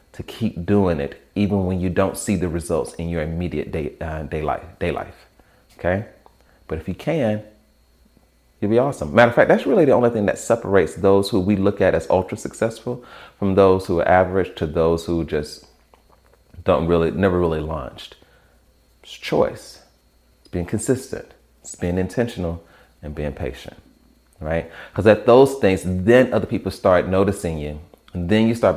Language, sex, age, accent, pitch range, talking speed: English, male, 30-49, American, 80-100 Hz, 180 wpm